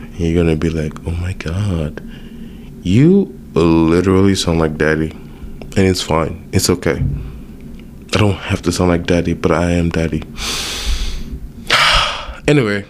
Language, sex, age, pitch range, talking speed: English, male, 20-39, 85-100 Hz, 135 wpm